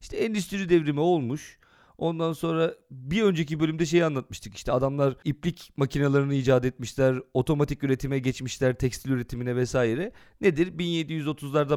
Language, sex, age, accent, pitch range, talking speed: Turkish, male, 40-59, native, 130-200 Hz, 125 wpm